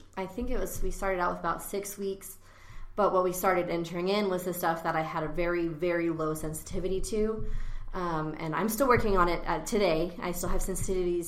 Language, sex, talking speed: English, female, 220 wpm